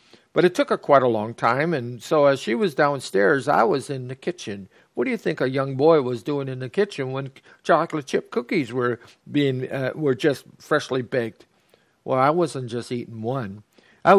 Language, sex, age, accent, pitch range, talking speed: English, male, 60-79, American, 125-170 Hz, 205 wpm